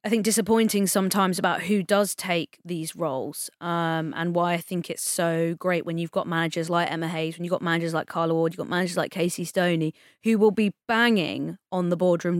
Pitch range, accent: 165-190 Hz, British